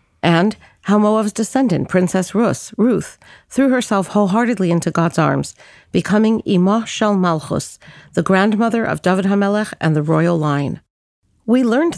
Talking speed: 140 wpm